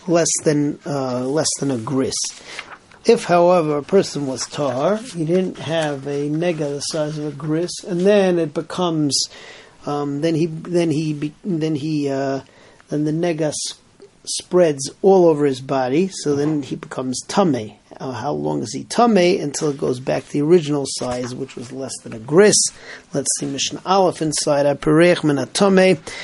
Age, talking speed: 40-59, 175 wpm